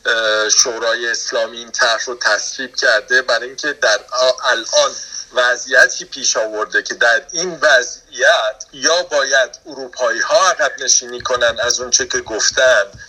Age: 50-69